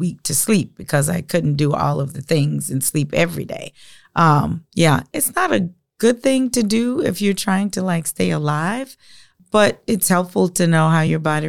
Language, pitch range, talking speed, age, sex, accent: English, 150-190 Hz, 205 wpm, 40-59, female, American